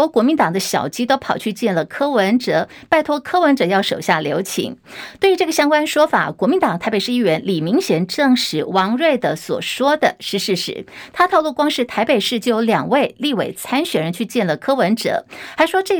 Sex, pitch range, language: female, 200-280 Hz, Chinese